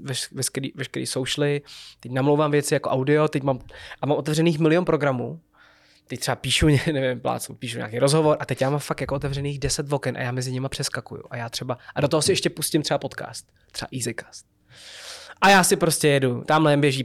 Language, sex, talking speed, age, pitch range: Czech, male, 200 wpm, 20-39, 135-165 Hz